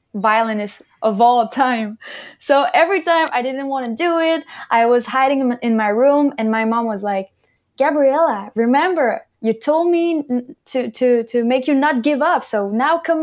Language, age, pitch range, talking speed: English, 10-29, 210-265 Hz, 180 wpm